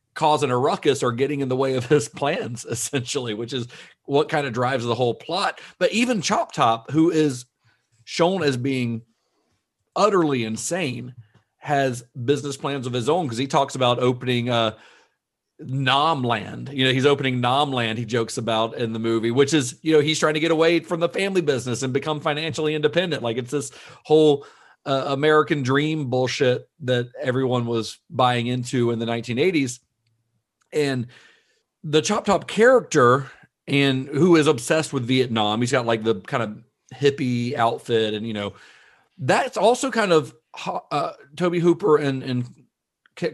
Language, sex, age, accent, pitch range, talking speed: English, male, 40-59, American, 120-150 Hz, 170 wpm